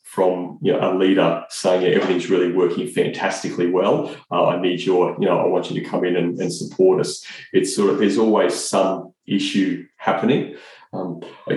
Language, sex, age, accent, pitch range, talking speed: English, male, 30-49, Australian, 95-110 Hz, 195 wpm